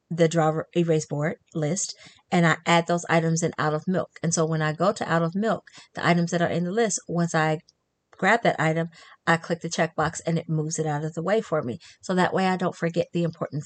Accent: American